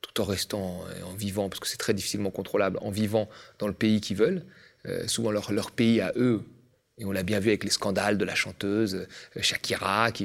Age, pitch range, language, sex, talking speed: 30-49, 100-125 Hz, French, male, 230 wpm